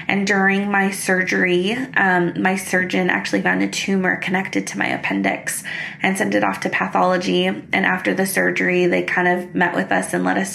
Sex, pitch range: female, 165-190 Hz